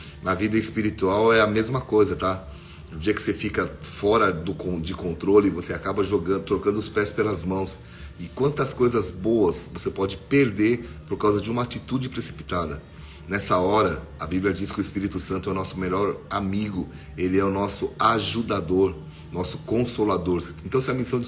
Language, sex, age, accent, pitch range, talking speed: Portuguese, male, 30-49, Brazilian, 90-110 Hz, 180 wpm